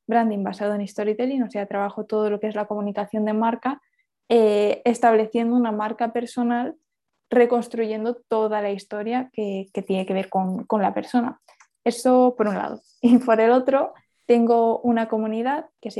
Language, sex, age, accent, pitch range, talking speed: Spanish, female, 20-39, Spanish, 220-250 Hz, 175 wpm